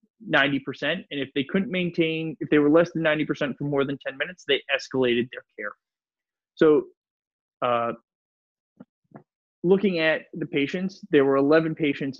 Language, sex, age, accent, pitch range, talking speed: English, male, 20-39, American, 135-180 Hz, 150 wpm